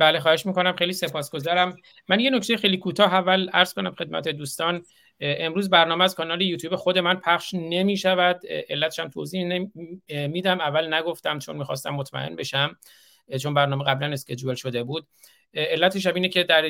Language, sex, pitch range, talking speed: Persian, male, 135-170 Hz, 160 wpm